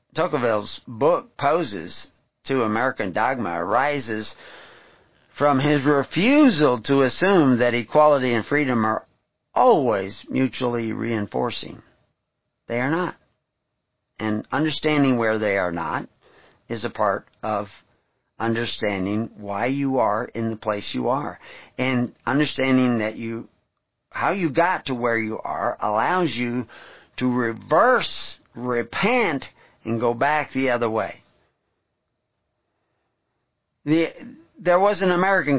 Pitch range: 110-140 Hz